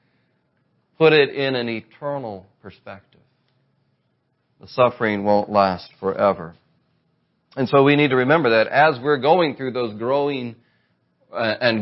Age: 40-59